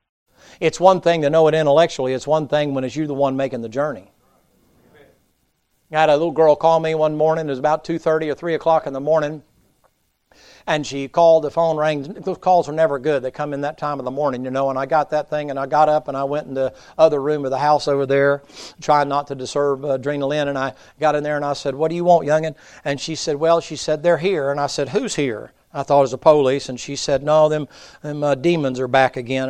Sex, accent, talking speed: male, American, 260 wpm